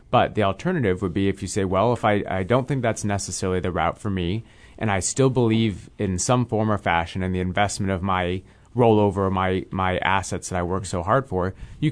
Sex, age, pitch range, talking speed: male, 30-49, 95-120 Hz, 225 wpm